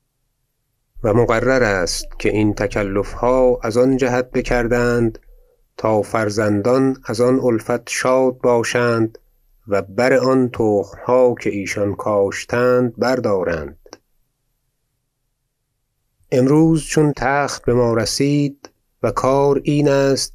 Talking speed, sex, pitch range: 105 wpm, male, 105-130 Hz